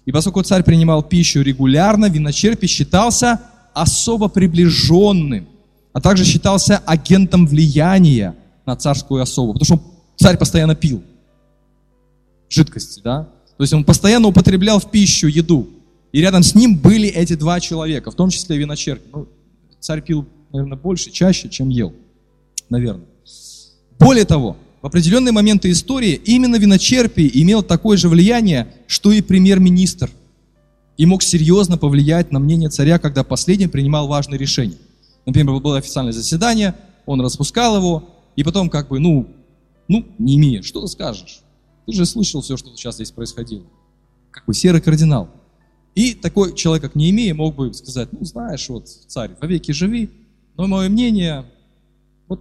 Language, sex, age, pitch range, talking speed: Russian, male, 20-39, 140-190 Hz, 150 wpm